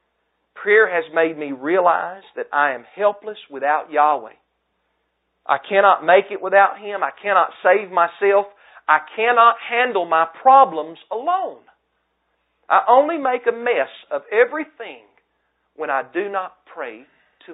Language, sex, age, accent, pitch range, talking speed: English, male, 40-59, American, 150-225 Hz, 135 wpm